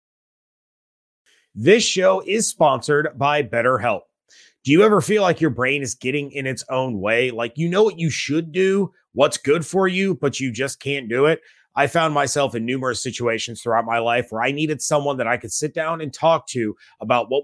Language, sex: English, male